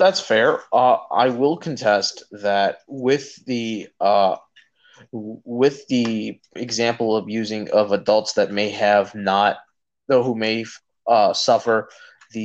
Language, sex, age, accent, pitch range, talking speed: English, male, 20-39, American, 105-130 Hz, 130 wpm